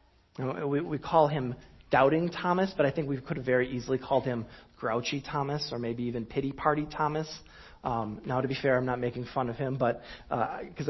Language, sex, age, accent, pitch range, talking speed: English, male, 40-59, American, 105-145 Hz, 195 wpm